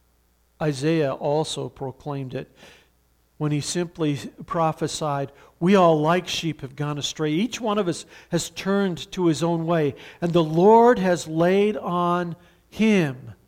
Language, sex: English, male